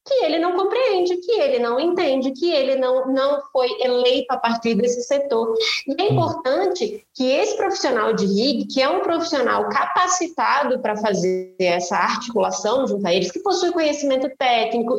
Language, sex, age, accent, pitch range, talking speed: Portuguese, female, 20-39, Brazilian, 240-325 Hz, 170 wpm